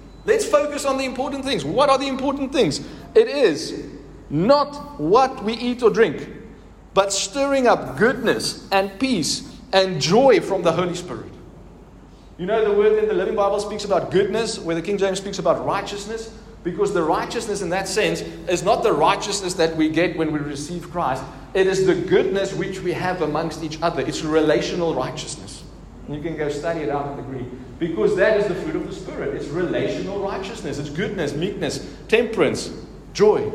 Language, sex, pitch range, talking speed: English, male, 170-235 Hz, 185 wpm